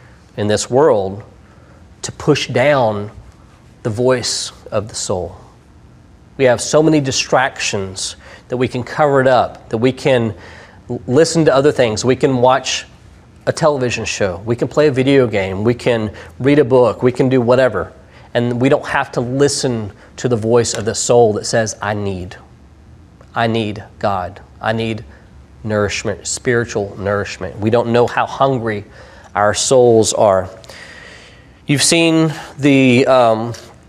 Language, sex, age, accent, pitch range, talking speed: English, male, 40-59, American, 105-130 Hz, 150 wpm